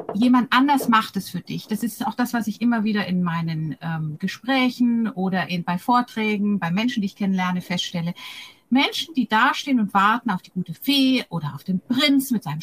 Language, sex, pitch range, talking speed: German, female, 195-260 Hz, 200 wpm